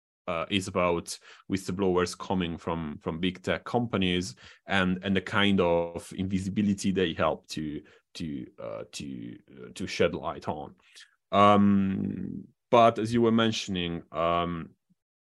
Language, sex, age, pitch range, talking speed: English, male, 30-49, 85-100 Hz, 135 wpm